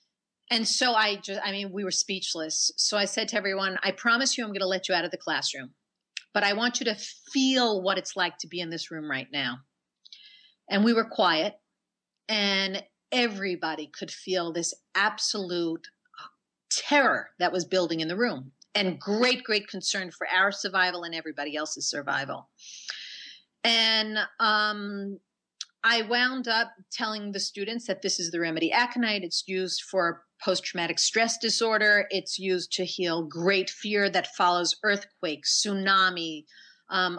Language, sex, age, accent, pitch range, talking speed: English, female, 40-59, American, 180-225 Hz, 165 wpm